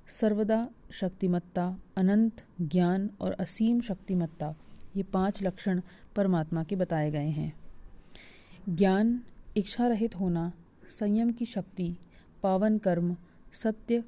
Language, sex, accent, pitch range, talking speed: Hindi, female, native, 170-205 Hz, 105 wpm